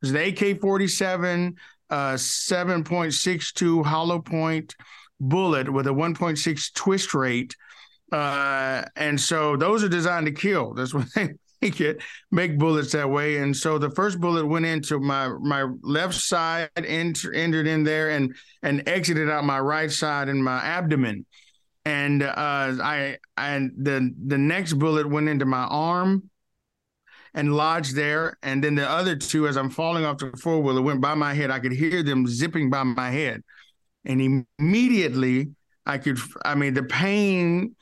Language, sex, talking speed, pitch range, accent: English, male, 160 wpm, 140-170 Hz, American